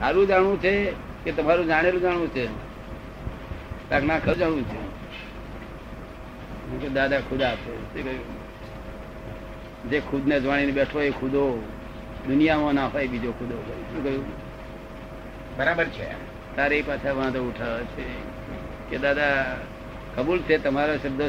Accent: native